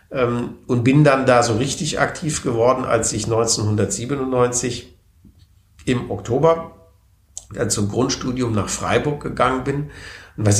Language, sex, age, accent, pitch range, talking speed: German, male, 50-69, German, 105-130 Hz, 125 wpm